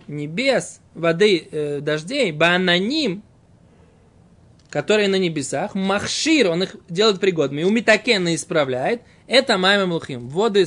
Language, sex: Russian, male